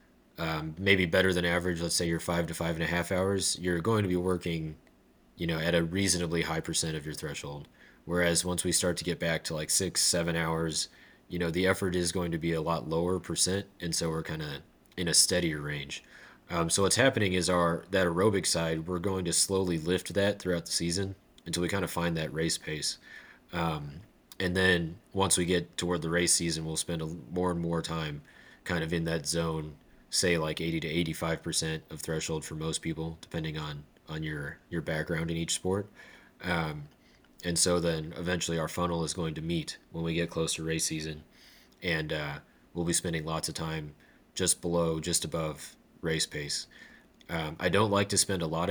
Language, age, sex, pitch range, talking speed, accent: English, 30-49, male, 80-90 Hz, 210 wpm, American